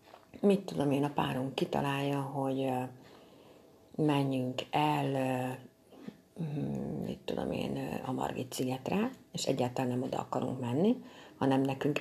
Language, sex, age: Hungarian, female, 60-79